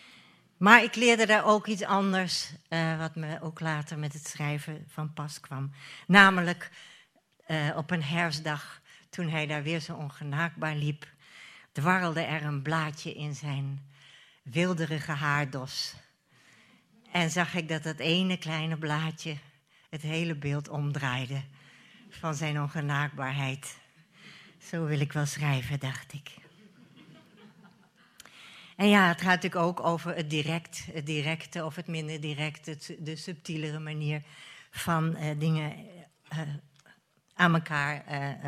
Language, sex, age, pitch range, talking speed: Dutch, female, 60-79, 150-175 Hz, 130 wpm